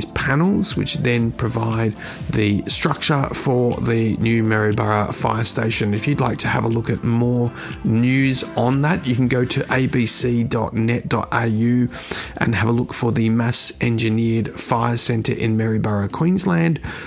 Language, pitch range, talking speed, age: English, 115-140 Hz, 150 wpm, 30-49